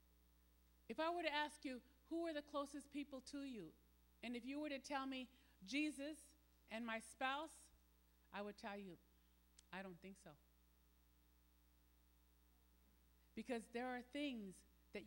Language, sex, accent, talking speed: English, female, American, 145 wpm